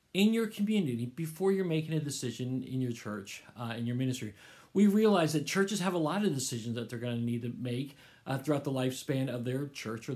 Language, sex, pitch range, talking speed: English, male, 130-180 Hz, 225 wpm